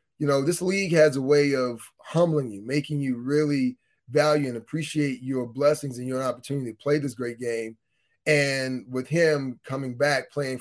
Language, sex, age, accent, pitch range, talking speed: English, male, 30-49, American, 130-155 Hz, 180 wpm